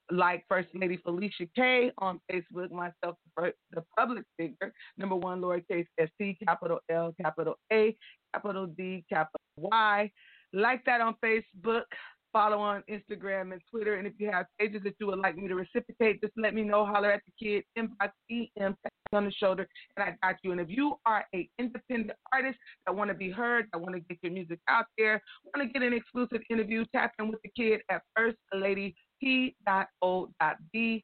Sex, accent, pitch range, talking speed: female, American, 185-230 Hz, 180 wpm